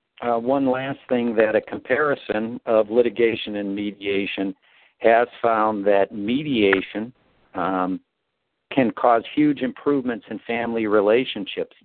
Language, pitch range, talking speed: English, 100-135 Hz, 115 wpm